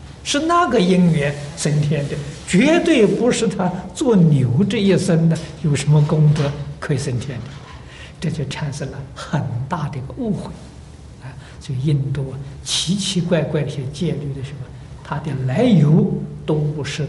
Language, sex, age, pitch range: Chinese, male, 60-79, 140-175 Hz